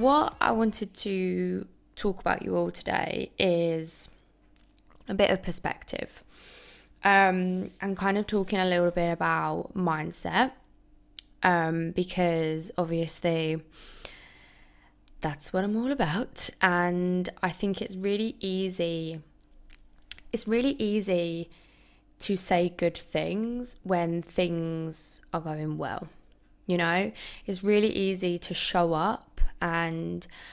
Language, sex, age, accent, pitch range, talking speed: English, female, 20-39, British, 165-190 Hz, 115 wpm